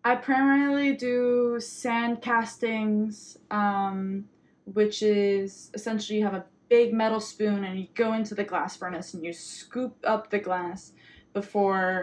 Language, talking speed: English, 145 wpm